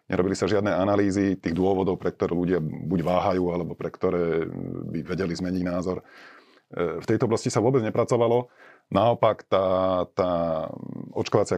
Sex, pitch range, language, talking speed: male, 85-100 Hz, Slovak, 145 wpm